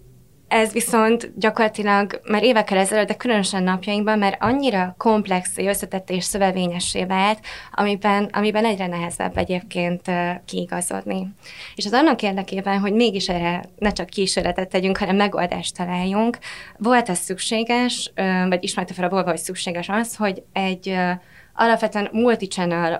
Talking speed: 140 wpm